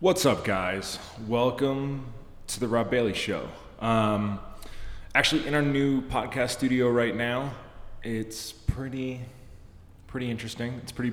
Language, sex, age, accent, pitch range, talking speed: English, male, 20-39, American, 100-125 Hz, 130 wpm